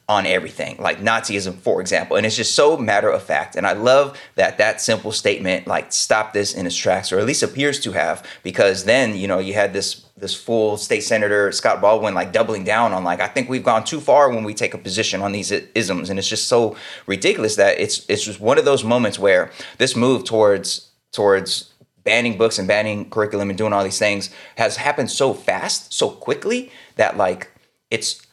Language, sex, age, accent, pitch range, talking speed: English, male, 20-39, American, 95-115 Hz, 215 wpm